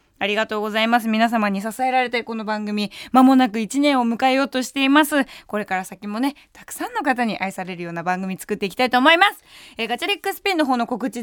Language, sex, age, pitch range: Japanese, female, 20-39, 215-305 Hz